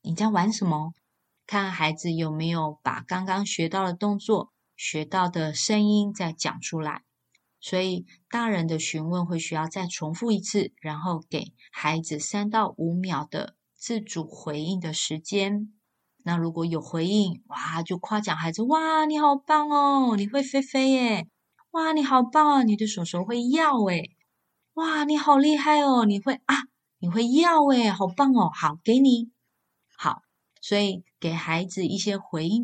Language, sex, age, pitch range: Chinese, female, 20-39, 165-215 Hz